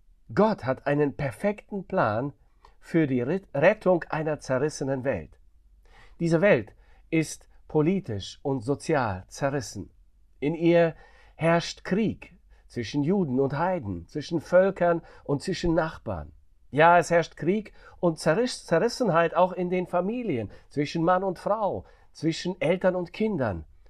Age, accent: 50-69, German